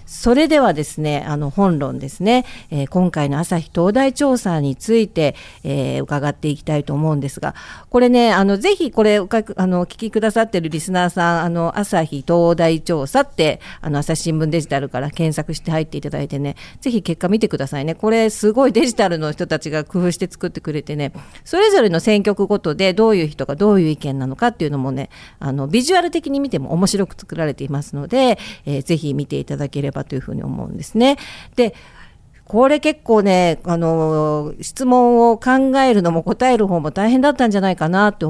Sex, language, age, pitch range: female, Japanese, 50-69, 150-230 Hz